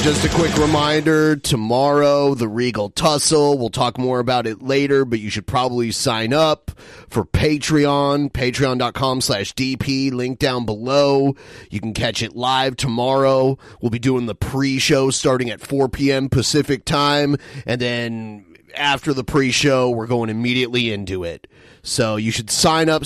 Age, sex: 30-49, male